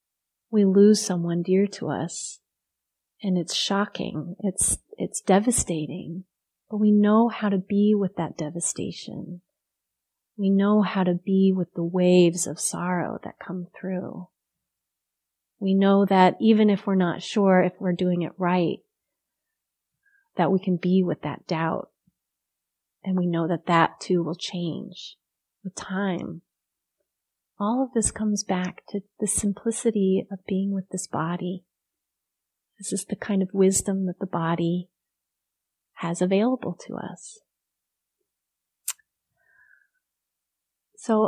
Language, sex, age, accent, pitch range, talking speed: English, female, 30-49, American, 180-205 Hz, 130 wpm